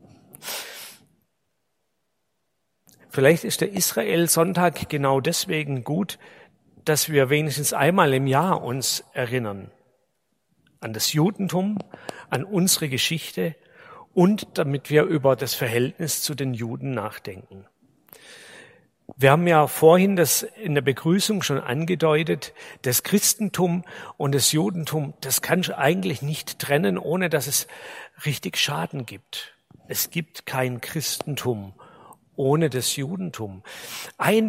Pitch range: 135-180 Hz